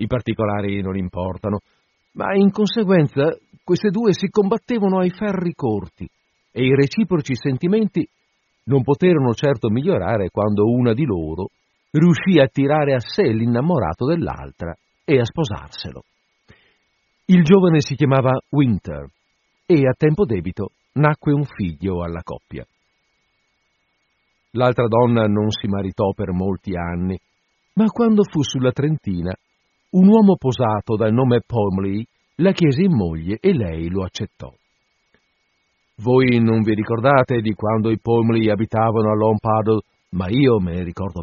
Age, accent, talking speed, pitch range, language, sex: 50-69, native, 135 wpm, 105-145 Hz, Italian, male